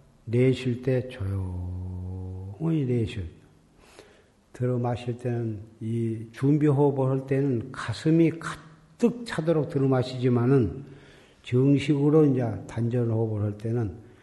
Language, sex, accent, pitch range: Korean, male, native, 110-135 Hz